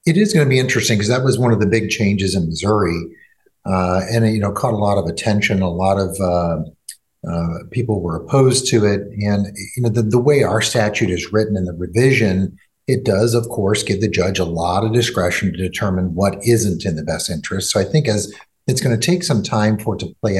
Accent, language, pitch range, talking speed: American, English, 95-115 Hz, 240 wpm